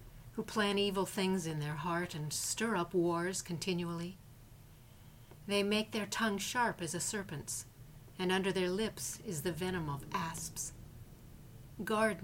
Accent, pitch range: American, 140-200 Hz